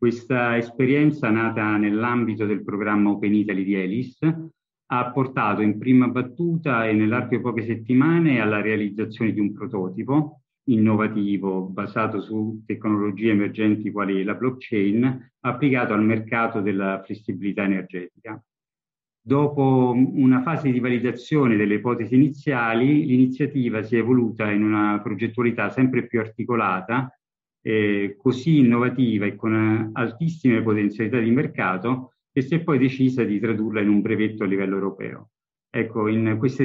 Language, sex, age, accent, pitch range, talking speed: Italian, male, 50-69, native, 105-130 Hz, 135 wpm